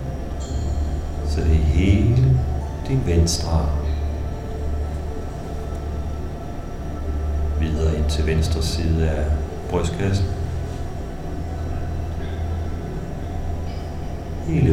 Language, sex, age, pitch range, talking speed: Danish, male, 60-79, 75-85 Hz, 55 wpm